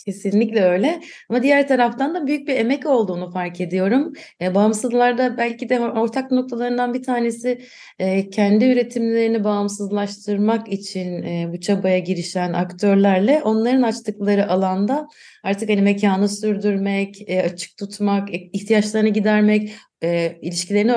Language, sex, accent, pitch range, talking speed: Turkish, female, native, 185-235 Hz, 125 wpm